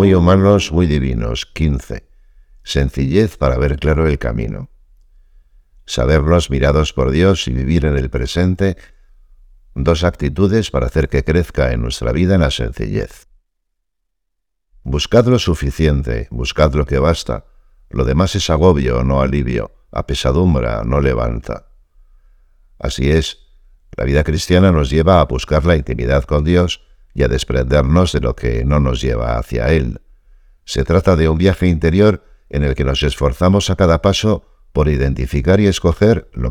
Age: 60-79